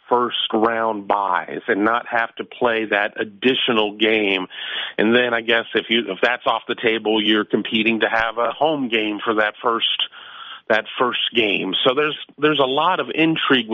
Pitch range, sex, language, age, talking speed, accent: 105-120 Hz, male, English, 40-59, 185 wpm, American